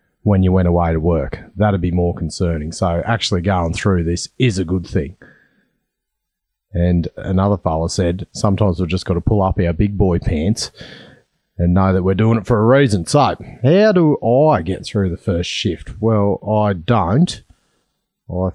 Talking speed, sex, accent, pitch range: 180 wpm, male, Australian, 90-115 Hz